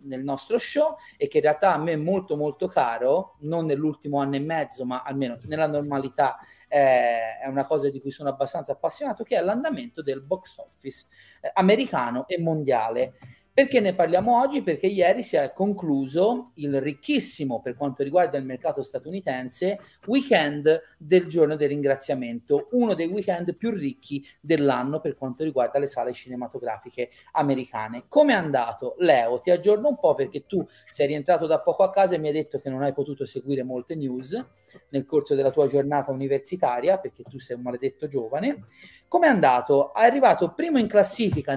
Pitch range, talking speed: 135-195 Hz, 180 wpm